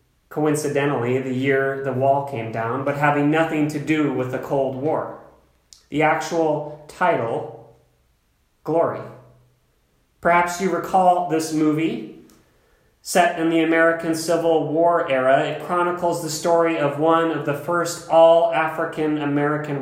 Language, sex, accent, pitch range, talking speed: English, male, American, 135-160 Hz, 125 wpm